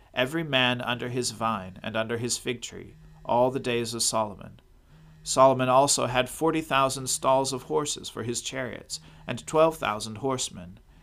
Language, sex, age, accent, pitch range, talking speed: English, male, 40-59, American, 115-135 Hz, 165 wpm